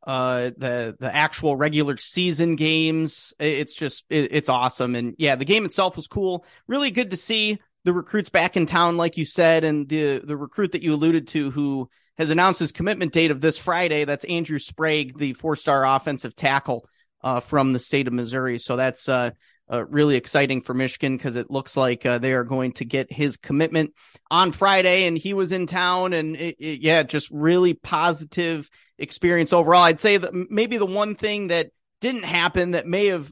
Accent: American